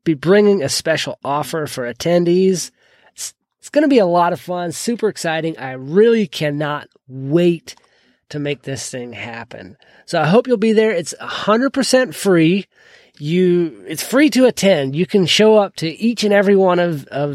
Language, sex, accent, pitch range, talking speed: English, male, American, 145-195 Hz, 185 wpm